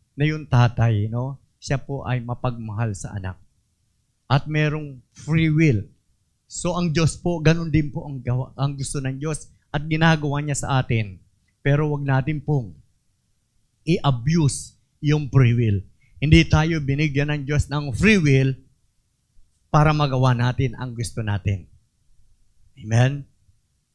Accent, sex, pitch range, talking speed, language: native, male, 110-155 Hz, 135 wpm, Filipino